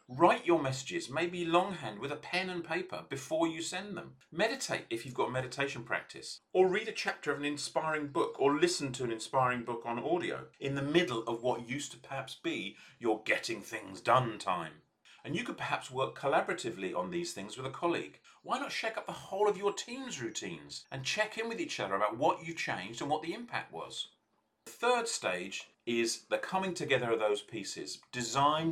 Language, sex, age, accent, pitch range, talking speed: English, male, 40-59, British, 120-175 Hz, 205 wpm